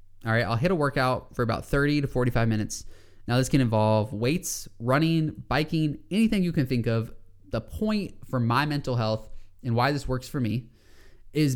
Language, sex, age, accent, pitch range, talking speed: English, male, 20-39, American, 110-140 Hz, 190 wpm